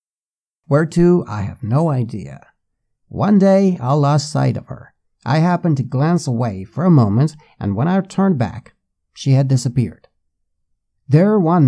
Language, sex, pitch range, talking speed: Persian, male, 120-170 Hz, 160 wpm